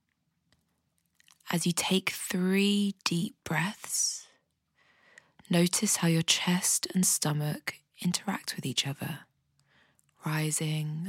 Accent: British